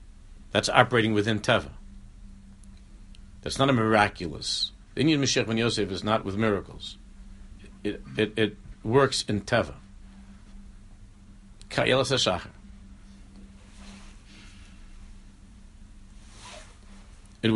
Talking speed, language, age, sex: 80 wpm, English, 60-79, male